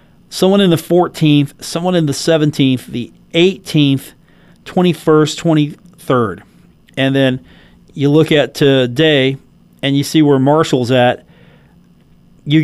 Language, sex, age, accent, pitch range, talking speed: English, male, 40-59, American, 140-170 Hz, 125 wpm